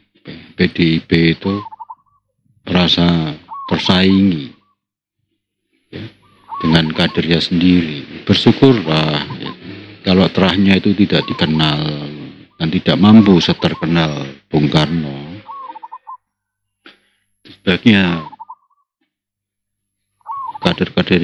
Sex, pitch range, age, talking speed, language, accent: male, 80-100 Hz, 40-59, 70 wpm, Indonesian, native